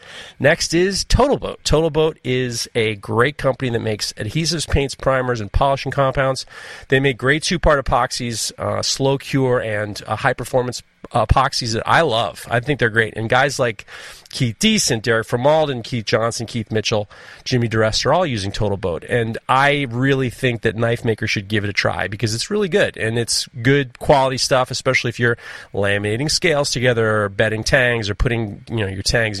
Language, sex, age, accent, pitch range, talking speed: English, male, 30-49, American, 110-145 Hz, 195 wpm